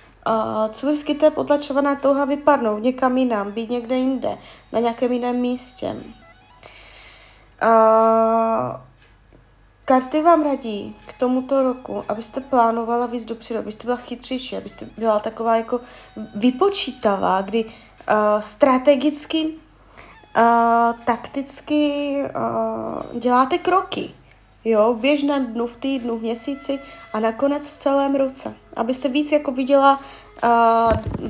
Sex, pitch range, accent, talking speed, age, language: female, 225-290 Hz, native, 115 wpm, 20-39, Czech